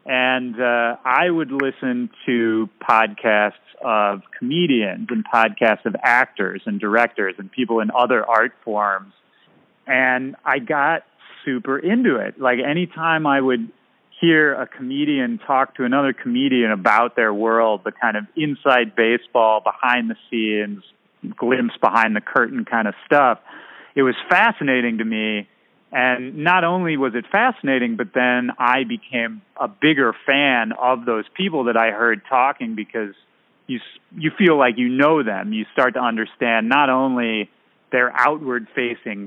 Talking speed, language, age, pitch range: 150 wpm, English, 30-49, 110-140 Hz